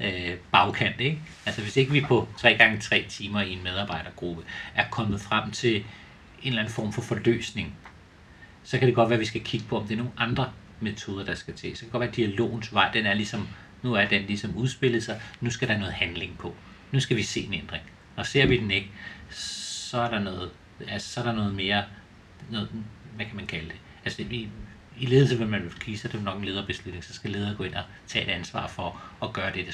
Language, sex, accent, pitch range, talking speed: Danish, male, native, 100-120 Hz, 235 wpm